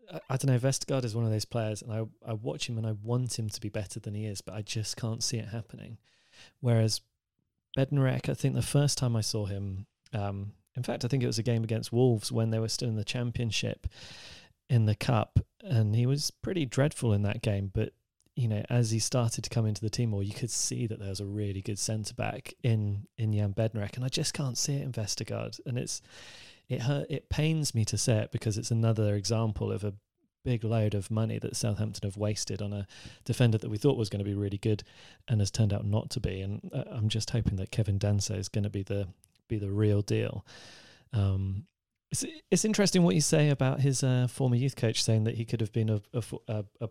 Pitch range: 105-125 Hz